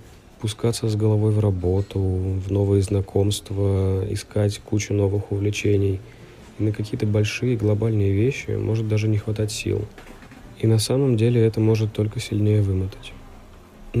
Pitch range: 100-115 Hz